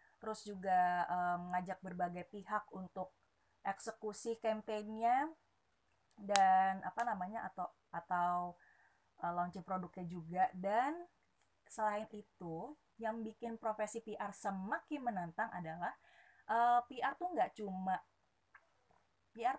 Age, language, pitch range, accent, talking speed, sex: 20-39, Indonesian, 185-225 Hz, native, 105 wpm, female